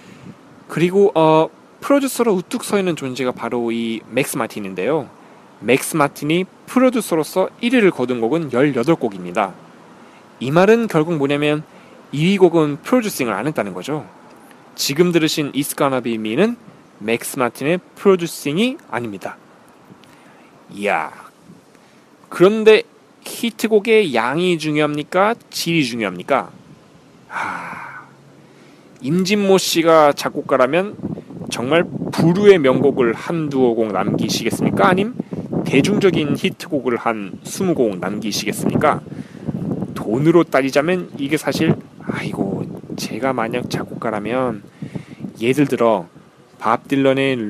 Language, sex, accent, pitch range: Korean, male, native, 125-180 Hz